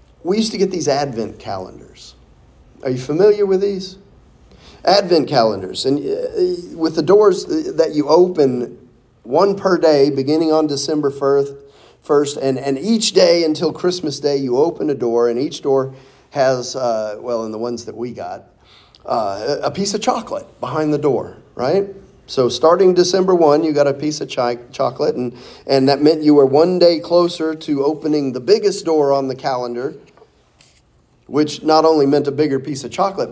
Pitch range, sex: 125-175 Hz, male